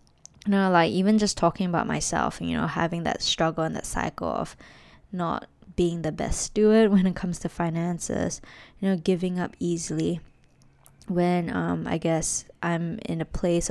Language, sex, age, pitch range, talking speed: English, female, 10-29, 170-190 Hz, 175 wpm